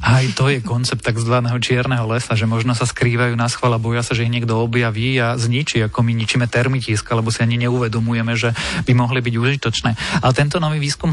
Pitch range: 115-145 Hz